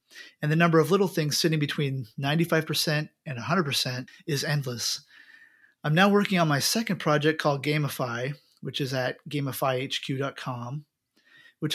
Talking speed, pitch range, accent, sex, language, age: 155 wpm, 135-165 Hz, American, male, English, 30-49